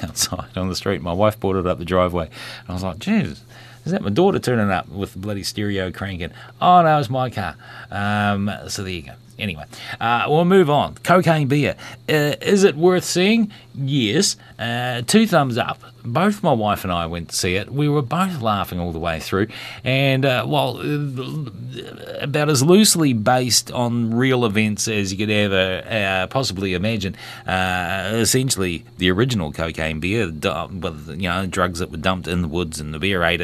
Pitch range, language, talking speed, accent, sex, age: 95-130 Hz, English, 190 wpm, Australian, male, 30-49